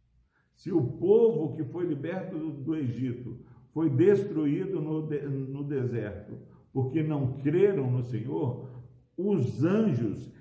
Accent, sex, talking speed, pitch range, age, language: Brazilian, male, 125 wpm, 125-165 Hz, 60-79, Portuguese